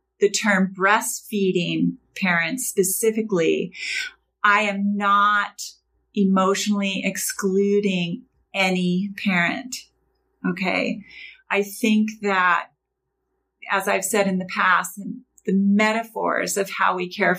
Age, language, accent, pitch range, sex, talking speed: 30-49, English, American, 180-215 Hz, female, 95 wpm